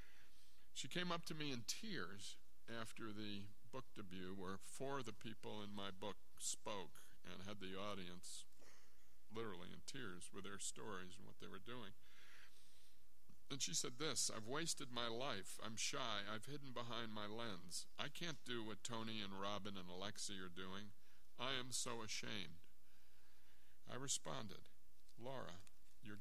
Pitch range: 80-120 Hz